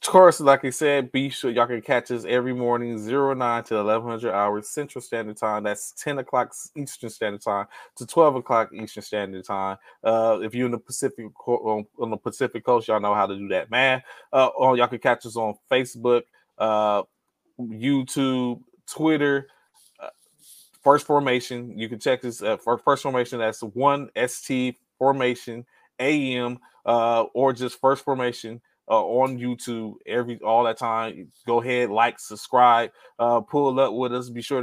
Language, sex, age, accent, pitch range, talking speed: English, male, 20-39, American, 115-130 Hz, 170 wpm